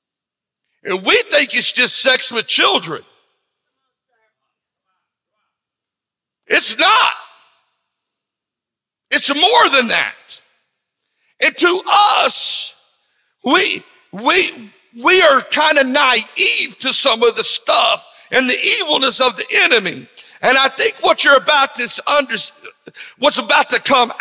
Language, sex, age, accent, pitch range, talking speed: English, male, 60-79, American, 245-320 Hz, 115 wpm